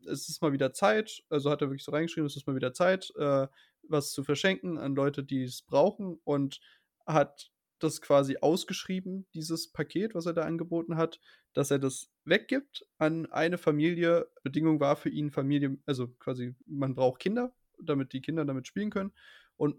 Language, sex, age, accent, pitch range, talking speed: German, male, 20-39, German, 135-165 Hz, 185 wpm